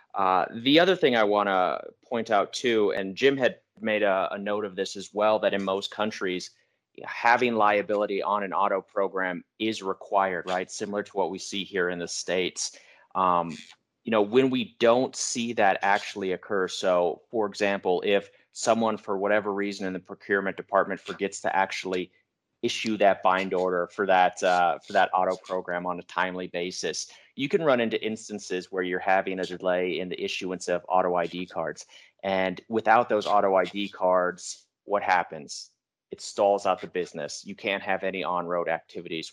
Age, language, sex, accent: 30-49, English, male, American